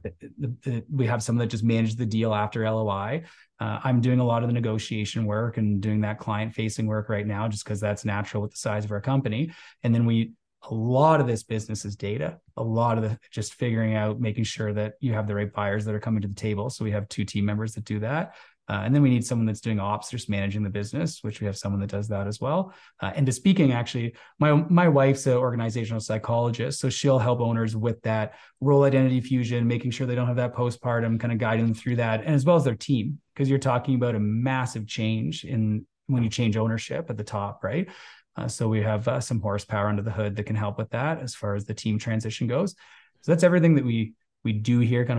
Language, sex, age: English, male, 20-39